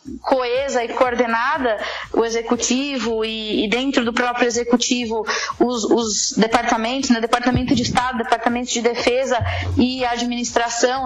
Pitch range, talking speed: 235-295 Hz, 130 wpm